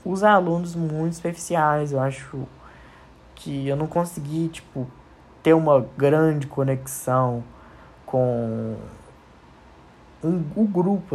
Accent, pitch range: Brazilian, 125-155 Hz